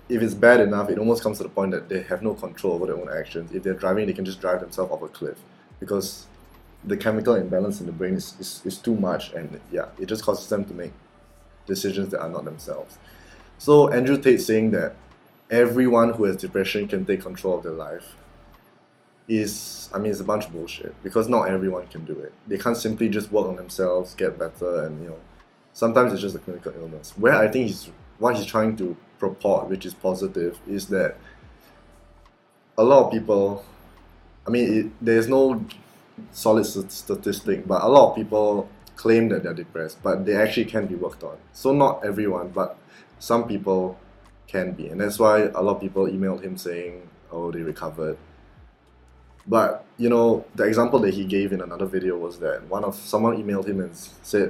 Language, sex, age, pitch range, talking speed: English, male, 20-39, 95-110 Hz, 205 wpm